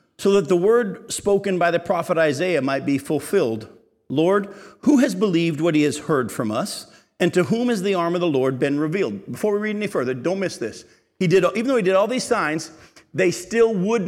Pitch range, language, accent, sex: 150-200 Hz, English, American, male